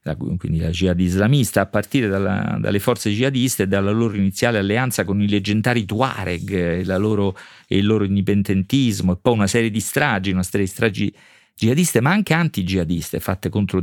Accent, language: native, Italian